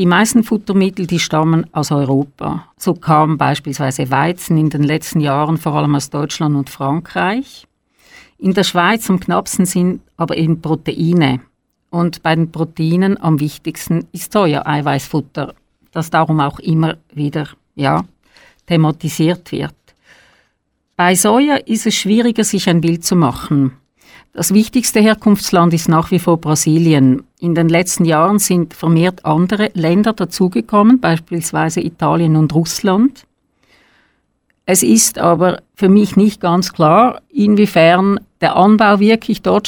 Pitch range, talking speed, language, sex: 155-190 Hz, 135 wpm, German, female